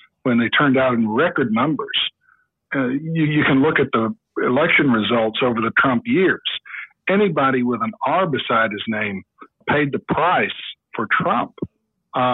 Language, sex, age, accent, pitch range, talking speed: English, male, 60-79, American, 125-155 Hz, 160 wpm